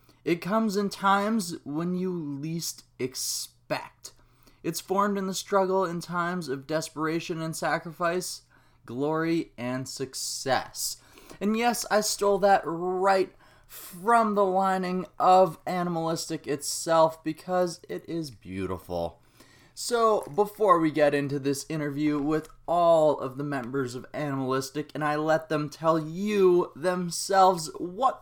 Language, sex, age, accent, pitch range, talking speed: English, male, 20-39, American, 140-190 Hz, 130 wpm